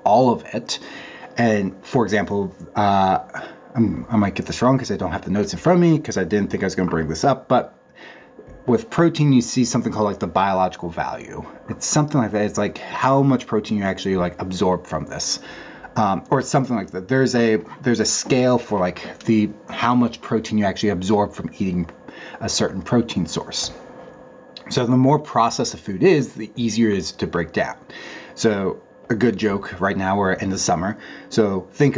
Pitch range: 100-130 Hz